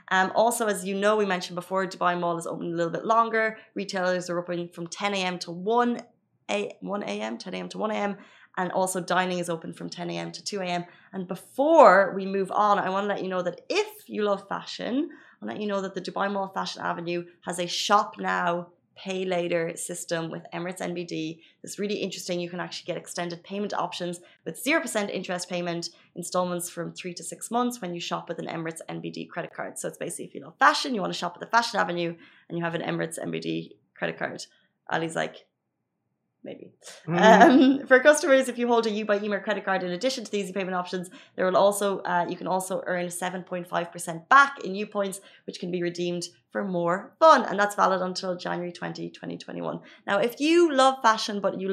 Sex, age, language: female, 20-39, Arabic